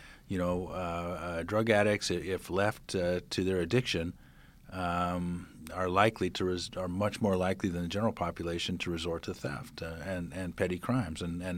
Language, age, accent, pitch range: English, 40-59, American, 90-105 Hz